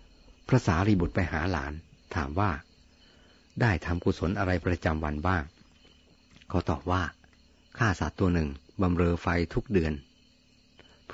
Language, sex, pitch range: Thai, male, 80-95 Hz